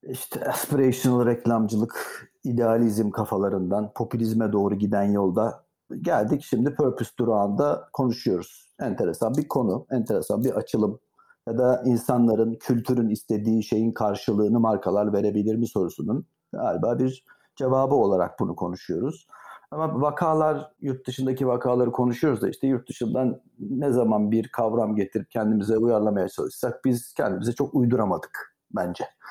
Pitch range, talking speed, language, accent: 110-130 Hz, 125 wpm, Turkish, native